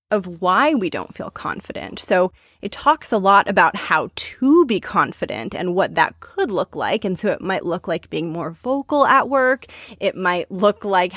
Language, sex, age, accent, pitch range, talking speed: English, female, 20-39, American, 180-245 Hz, 200 wpm